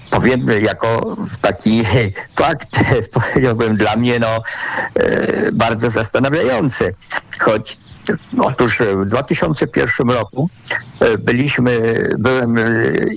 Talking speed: 75 wpm